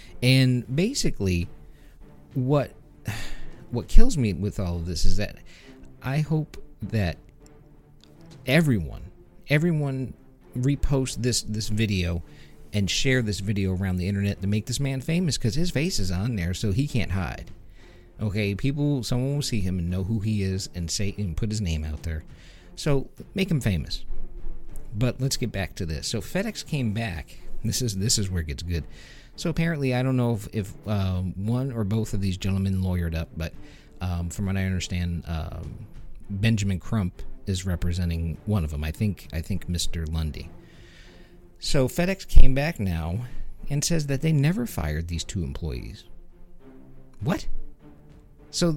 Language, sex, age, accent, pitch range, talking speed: English, male, 50-69, American, 85-125 Hz, 165 wpm